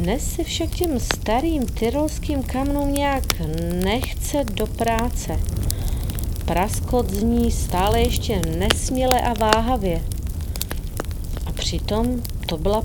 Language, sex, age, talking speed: Czech, female, 40-59, 105 wpm